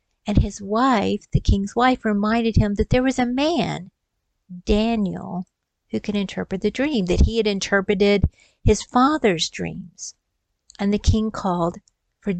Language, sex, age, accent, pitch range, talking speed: English, female, 50-69, American, 185-210 Hz, 150 wpm